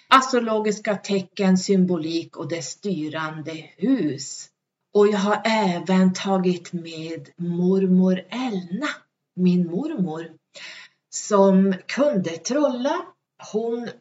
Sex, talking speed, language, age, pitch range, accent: female, 90 wpm, Swedish, 40-59, 170-220 Hz, native